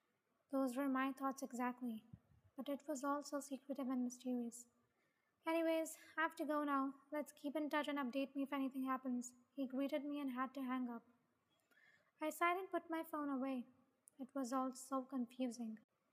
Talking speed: 180 wpm